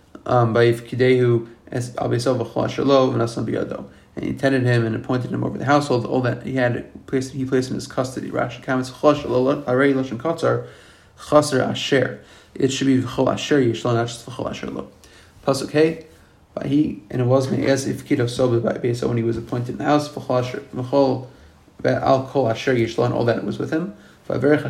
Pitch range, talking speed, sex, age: 120-140 Hz, 110 wpm, male, 30-49